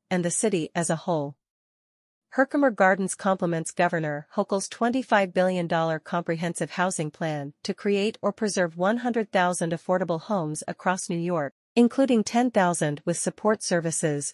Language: English